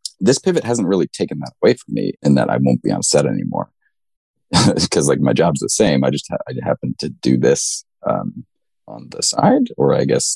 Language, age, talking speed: English, 30-49, 215 wpm